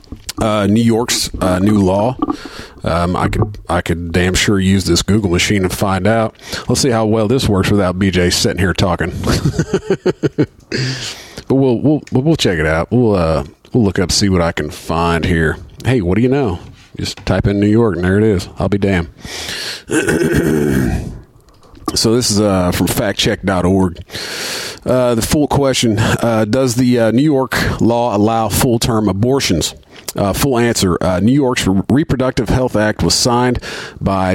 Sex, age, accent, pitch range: male, 40-59, American, 95-120 Hz